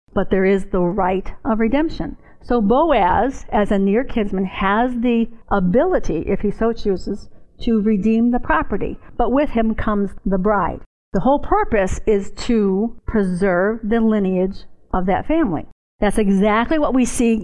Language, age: English, 50-69